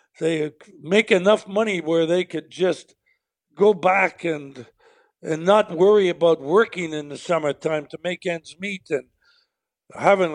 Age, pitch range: 60-79, 140-190 Hz